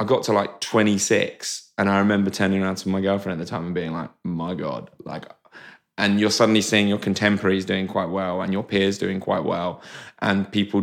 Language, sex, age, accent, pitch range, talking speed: English, male, 20-39, British, 95-110 Hz, 215 wpm